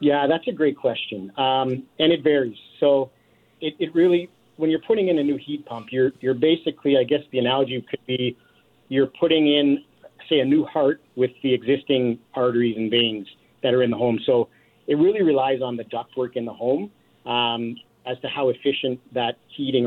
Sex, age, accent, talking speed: male, 50-69, American, 195 wpm